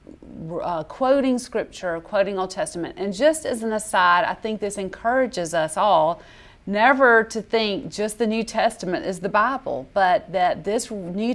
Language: English